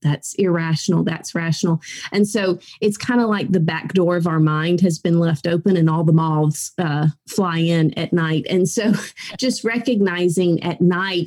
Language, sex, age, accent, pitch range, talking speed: English, female, 30-49, American, 160-200 Hz, 185 wpm